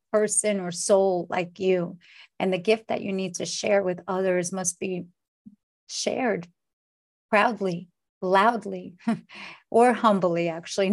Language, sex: English, female